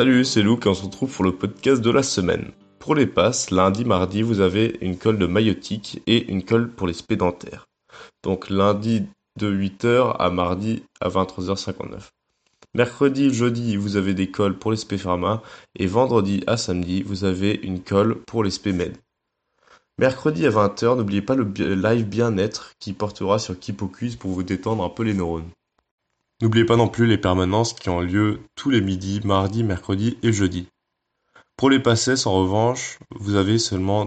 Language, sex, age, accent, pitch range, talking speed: French, male, 20-39, French, 95-115 Hz, 175 wpm